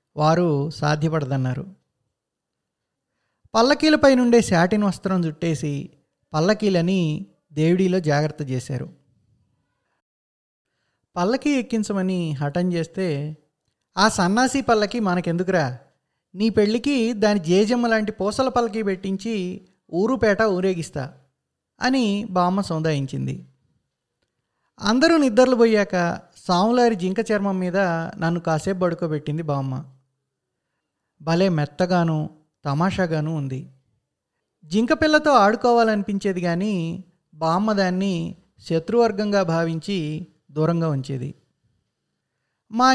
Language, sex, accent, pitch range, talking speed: Telugu, male, native, 155-210 Hz, 80 wpm